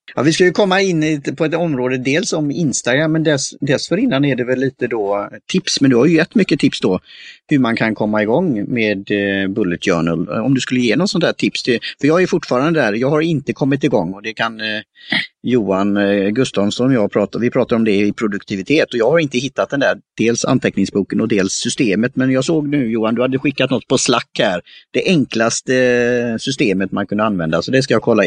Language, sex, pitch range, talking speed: Swedish, male, 105-145 Hz, 235 wpm